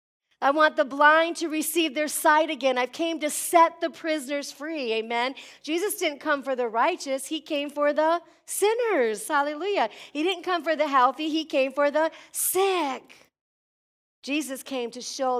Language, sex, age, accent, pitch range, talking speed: English, female, 40-59, American, 240-300 Hz, 175 wpm